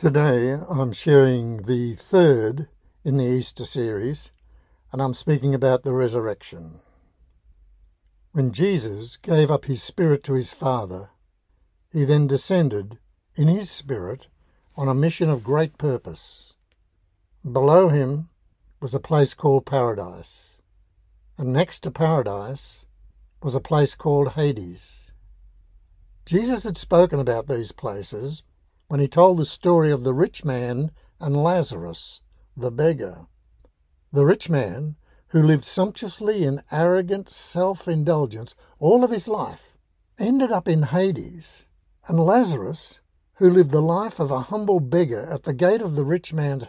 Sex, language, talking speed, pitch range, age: male, English, 135 wpm, 100-165 Hz, 60-79